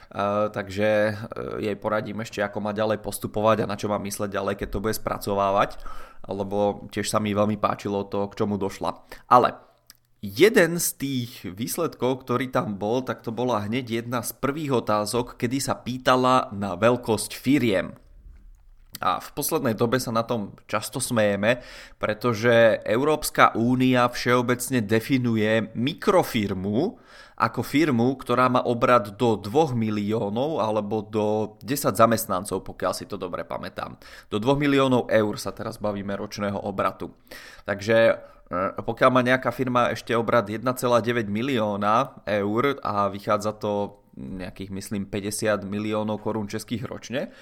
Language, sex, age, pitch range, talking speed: Czech, male, 20-39, 105-125 Hz, 145 wpm